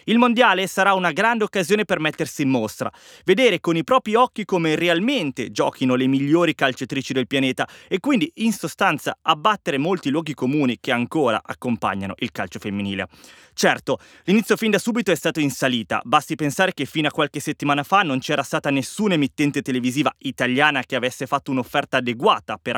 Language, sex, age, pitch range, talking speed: Italian, male, 20-39, 125-180 Hz, 175 wpm